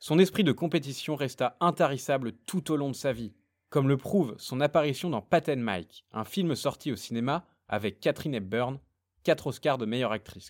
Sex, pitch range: male, 115-160 Hz